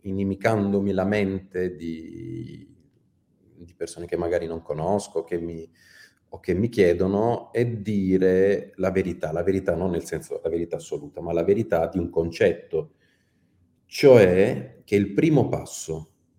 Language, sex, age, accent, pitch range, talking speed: Italian, male, 40-59, native, 85-115 Hz, 135 wpm